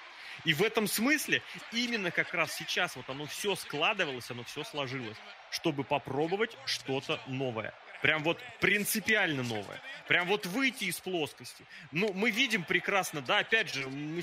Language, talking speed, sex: Russian, 150 wpm, male